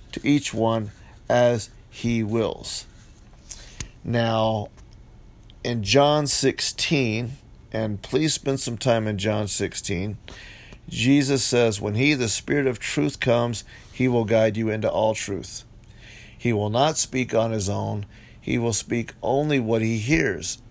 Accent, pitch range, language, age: American, 110-130 Hz, English, 40-59